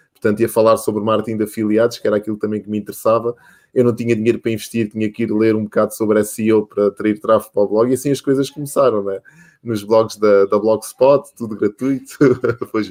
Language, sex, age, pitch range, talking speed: Portuguese, male, 20-39, 110-140 Hz, 235 wpm